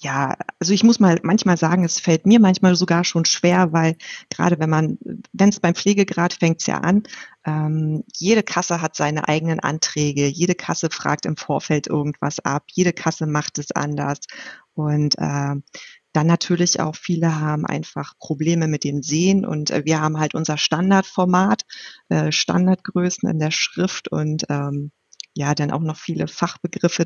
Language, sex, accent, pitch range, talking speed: German, female, German, 150-175 Hz, 170 wpm